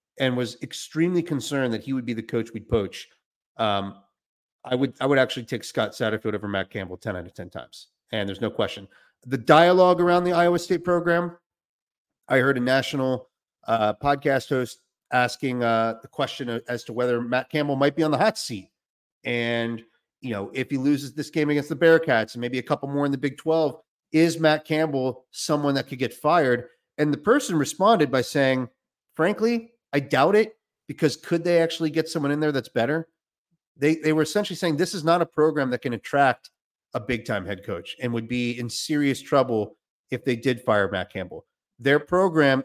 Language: English